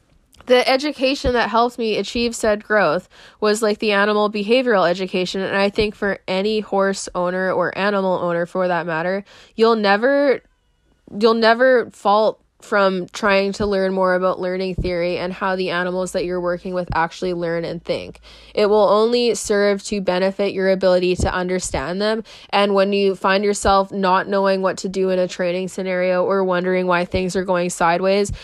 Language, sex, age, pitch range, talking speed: English, female, 10-29, 180-205 Hz, 175 wpm